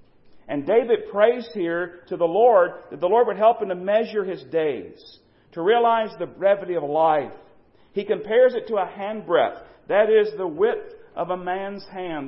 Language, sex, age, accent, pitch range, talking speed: English, male, 50-69, American, 155-225 Hz, 185 wpm